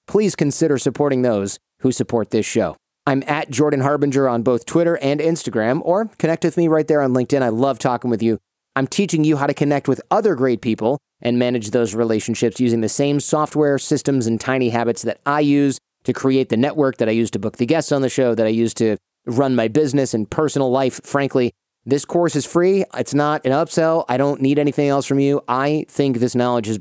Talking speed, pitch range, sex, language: 225 wpm, 115-145 Hz, male, English